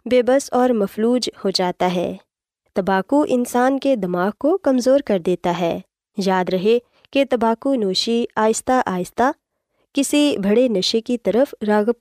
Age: 20-39